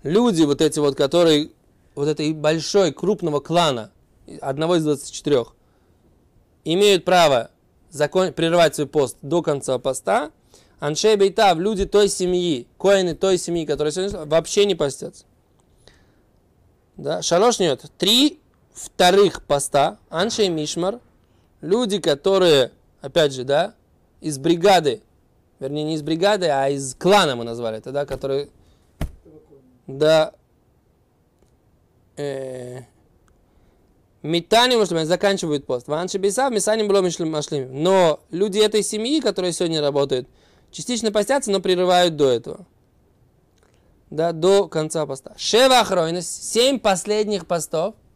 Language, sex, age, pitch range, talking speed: Russian, male, 20-39, 135-195 Hz, 110 wpm